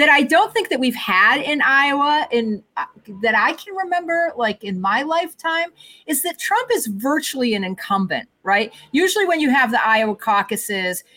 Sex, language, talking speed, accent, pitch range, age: female, English, 175 wpm, American, 205-275 Hz, 40-59